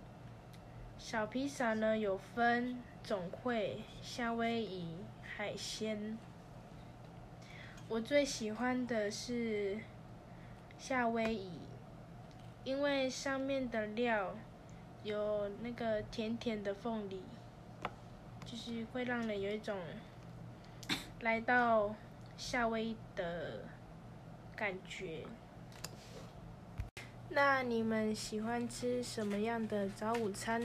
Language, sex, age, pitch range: Chinese, female, 10-29, 200-235 Hz